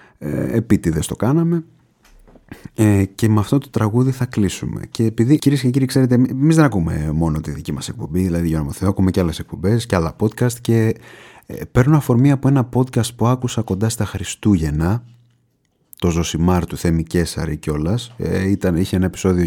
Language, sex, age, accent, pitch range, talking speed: Greek, male, 30-49, native, 85-115 Hz, 175 wpm